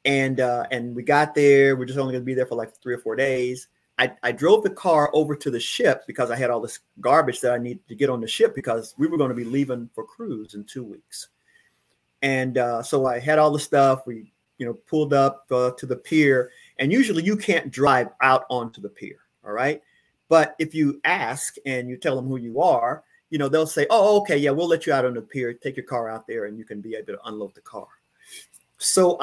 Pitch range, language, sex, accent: 120-150 Hz, English, male, American